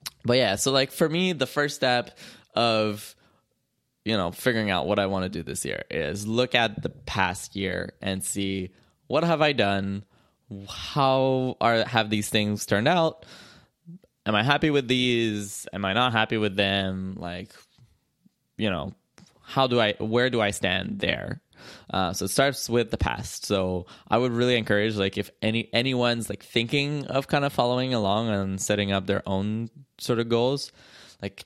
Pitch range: 100-125 Hz